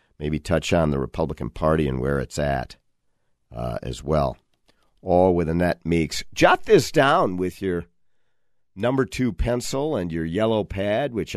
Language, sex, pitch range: English, male, 75-110 Hz